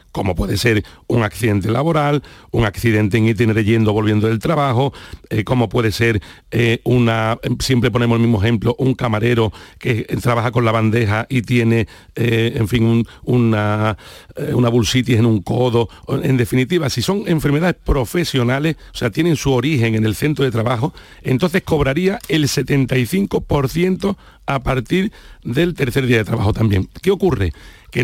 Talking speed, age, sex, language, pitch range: 165 wpm, 60-79, male, Spanish, 115-150 Hz